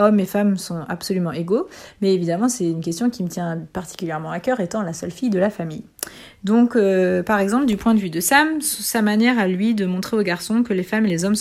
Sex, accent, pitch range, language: female, French, 175-215 Hz, English